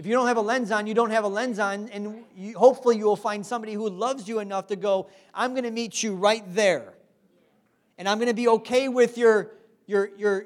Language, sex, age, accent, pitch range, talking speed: English, male, 40-59, American, 195-235 Hz, 245 wpm